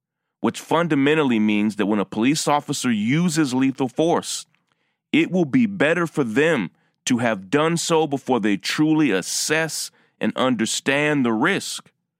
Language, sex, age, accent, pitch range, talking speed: English, male, 30-49, American, 120-160 Hz, 145 wpm